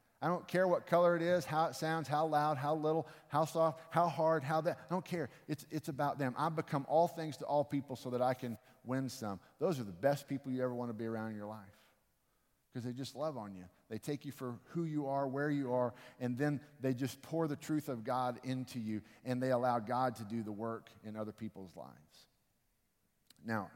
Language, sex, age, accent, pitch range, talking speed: English, male, 50-69, American, 115-150 Hz, 235 wpm